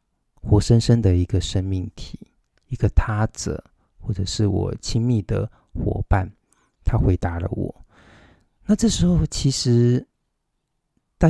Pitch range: 95-115 Hz